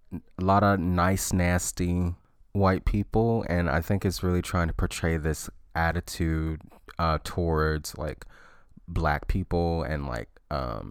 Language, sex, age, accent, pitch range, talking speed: English, male, 20-39, American, 75-90 Hz, 140 wpm